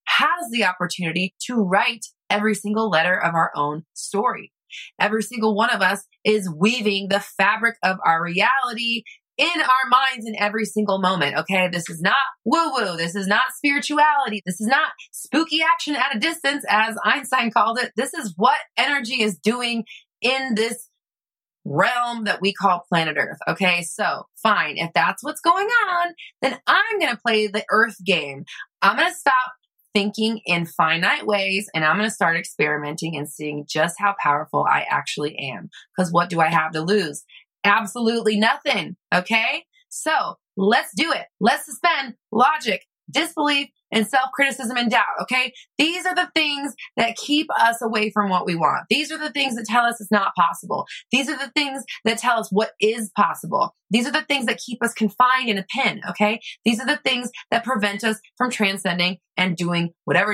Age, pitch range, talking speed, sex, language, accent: 20-39, 185-255 Hz, 180 wpm, female, English, American